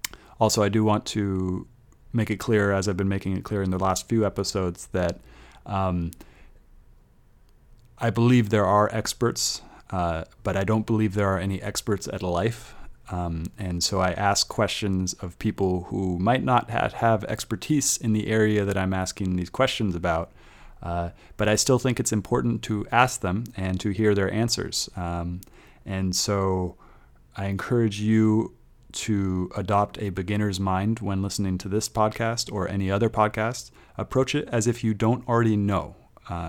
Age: 30-49